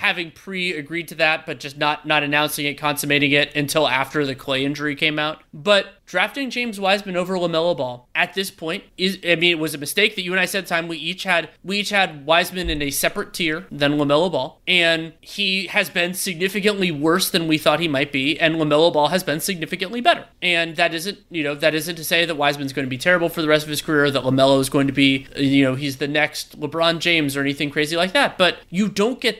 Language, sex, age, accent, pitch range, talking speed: English, male, 30-49, American, 155-200 Hz, 240 wpm